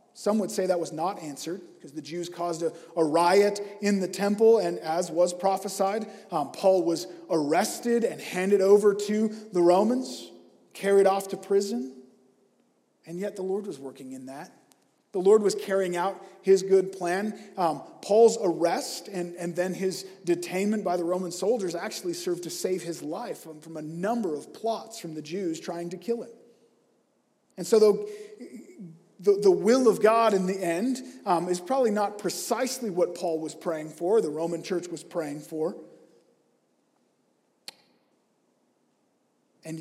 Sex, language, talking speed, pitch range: male, English, 165 wpm, 170-210 Hz